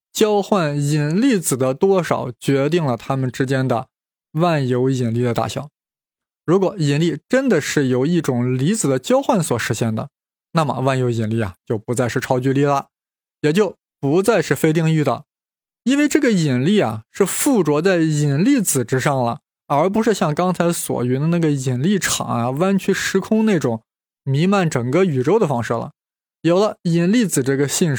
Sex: male